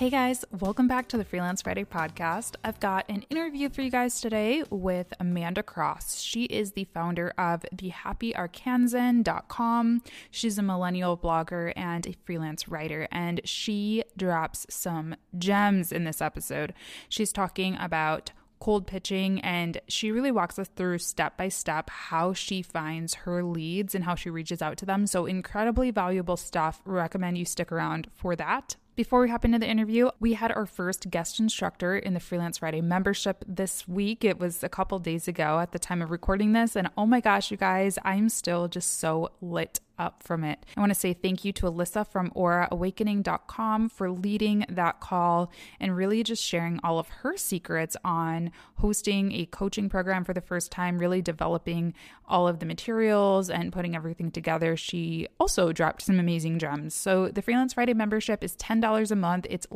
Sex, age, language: female, 20-39, English